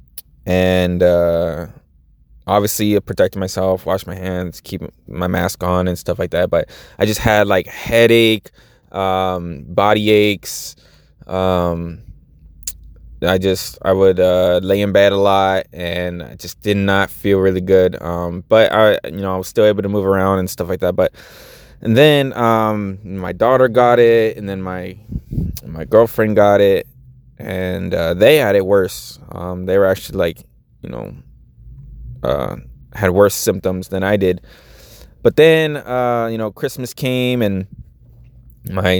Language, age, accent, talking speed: English, 20-39, American, 160 wpm